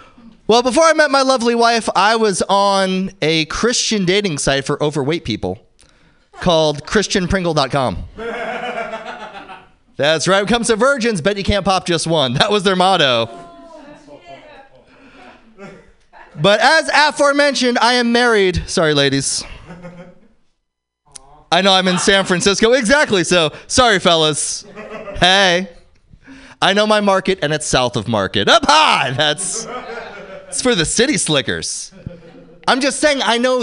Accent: American